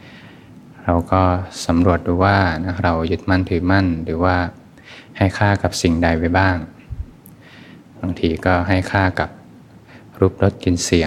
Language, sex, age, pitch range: Thai, male, 20-39, 90-100 Hz